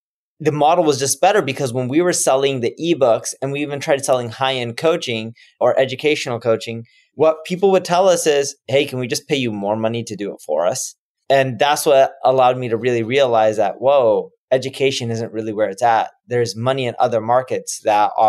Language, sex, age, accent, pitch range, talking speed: English, male, 20-39, American, 115-140 Hz, 205 wpm